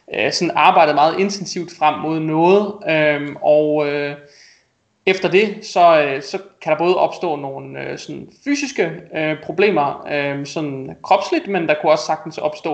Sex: male